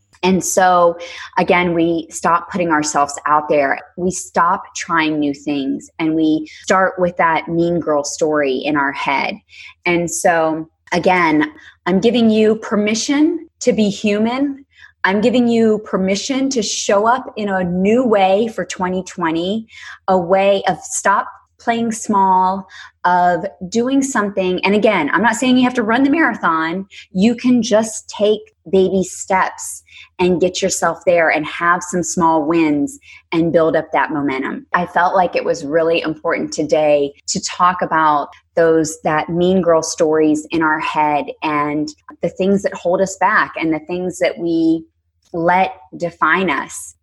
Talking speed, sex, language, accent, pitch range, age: 155 wpm, female, English, American, 165-210 Hz, 20-39